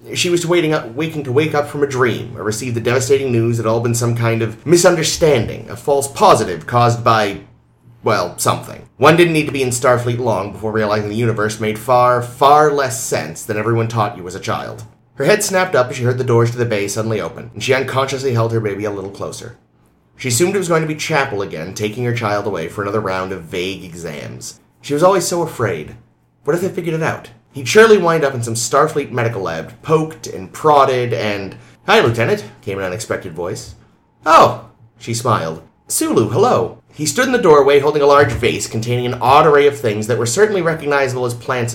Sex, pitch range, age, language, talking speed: male, 110-145 Hz, 30-49, English, 220 wpm